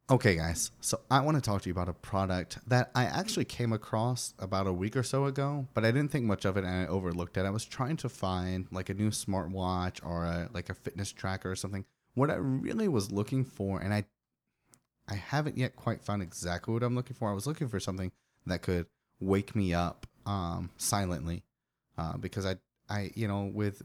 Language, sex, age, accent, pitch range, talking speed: English, male, 30-49, American, 95-120 Hz, 220 wpm